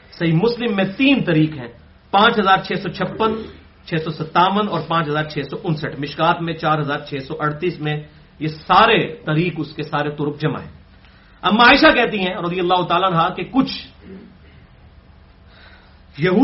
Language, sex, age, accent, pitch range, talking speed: English, male, 40-59, Indian, 140-205 Hz, 90 wpm